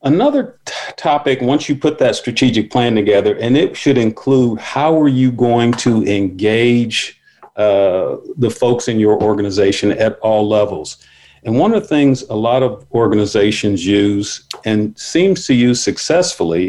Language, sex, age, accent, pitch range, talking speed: English, male, 50-69, American, 110-135 Hz, 155 wpm